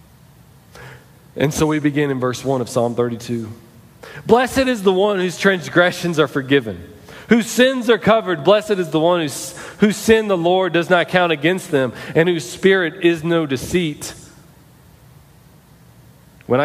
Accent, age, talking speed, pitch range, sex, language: American, 40-59, 150 wpm, 130-195 Hz, male, English